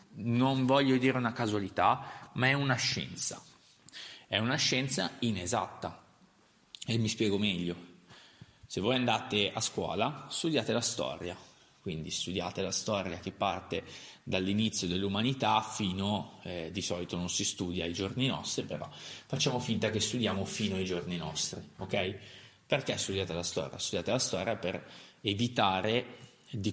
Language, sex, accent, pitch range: Italian, male, native, 95-130 Hz